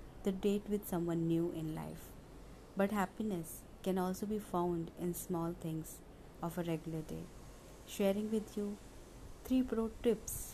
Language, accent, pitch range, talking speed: English, Indian, 165-205 Hz, 150 wpm